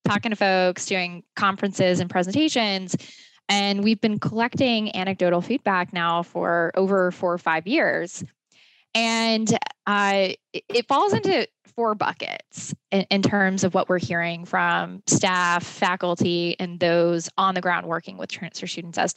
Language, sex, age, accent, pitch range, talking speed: English, female, 20-39, American, 175-205 Hz, 145 wpm